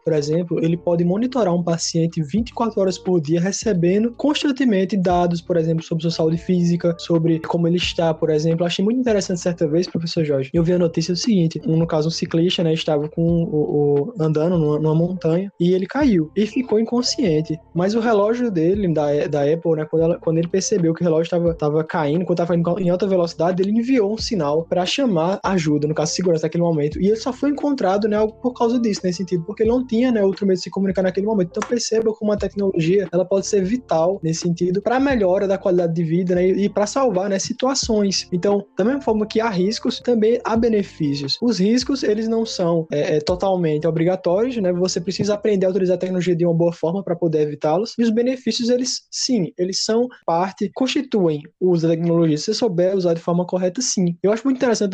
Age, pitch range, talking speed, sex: 20-39, 170-220 Hz, 215 wpm, male